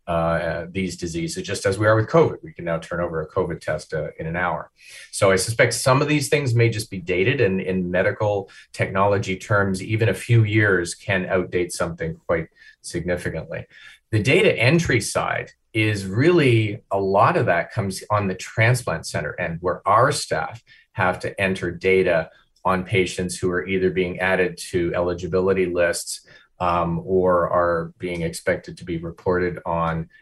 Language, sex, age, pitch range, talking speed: English, male, 30-49, 90-115 Hz, 175 wpm